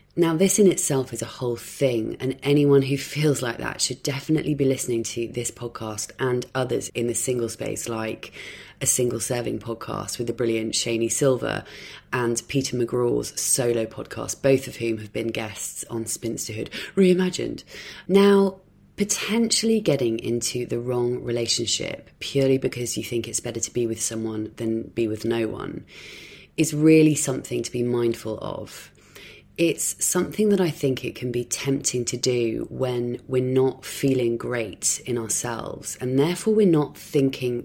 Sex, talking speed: female, 165 wpm